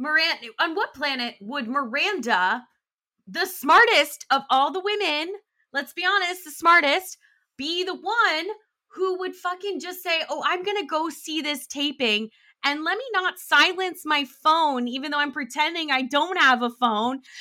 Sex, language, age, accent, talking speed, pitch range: female, English, 20-39, American, 170 wpm, 280-380 Hz